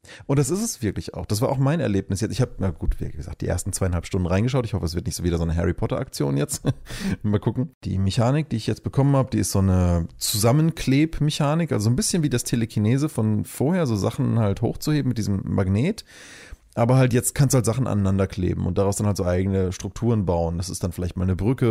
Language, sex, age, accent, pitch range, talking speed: German, male, 30-49, German, 100-130 Hz, 240 wpm